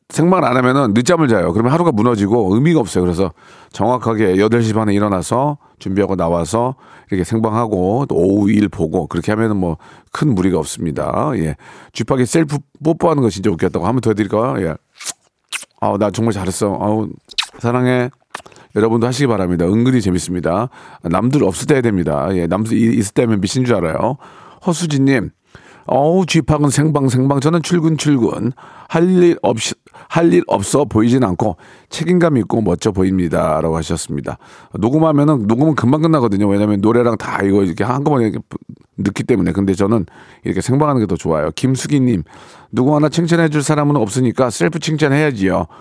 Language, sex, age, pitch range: Korean, male, 40-59, 95-145 Hz